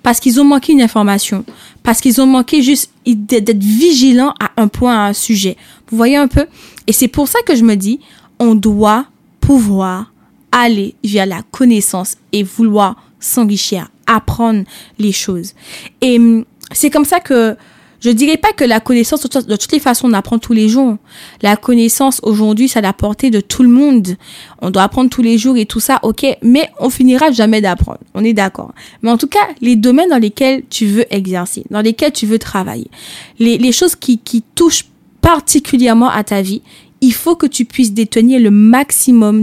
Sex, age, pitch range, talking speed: female, 20-39, 220-270 Hz, 190 wpm